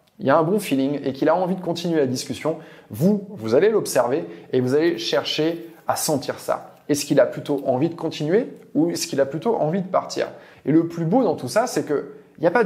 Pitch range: 140-190 Hz